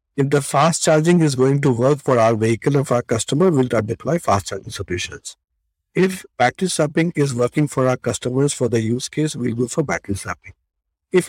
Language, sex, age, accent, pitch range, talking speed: English, male, 50-69, Indian, 120-175 Hz, 205 wpm